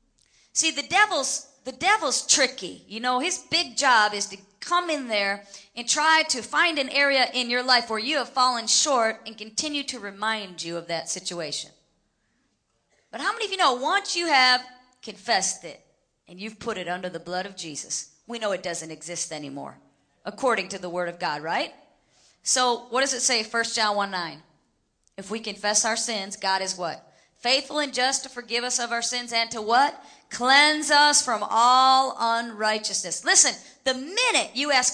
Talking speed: 185 wpm